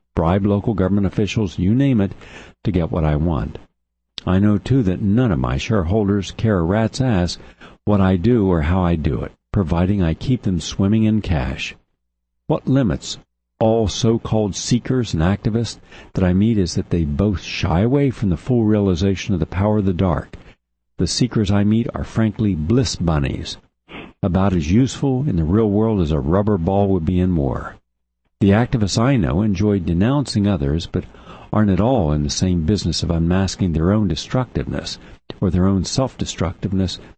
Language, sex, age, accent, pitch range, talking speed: English, male, 60-79, American, 85-105 Hz, 180 wpm